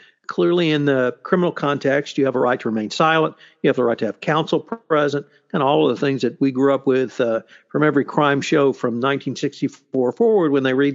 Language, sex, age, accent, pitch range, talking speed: English, male, 60-79, American, 135-180 Hz, 225 wpm